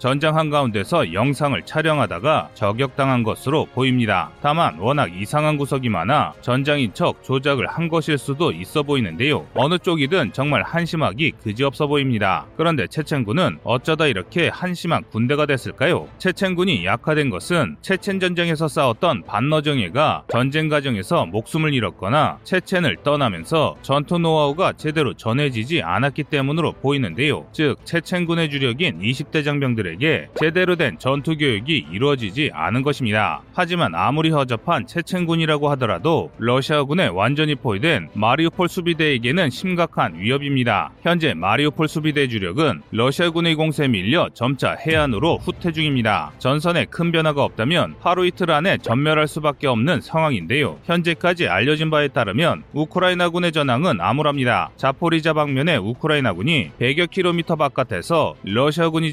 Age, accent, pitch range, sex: 30-49, native, 130-165 Hz, male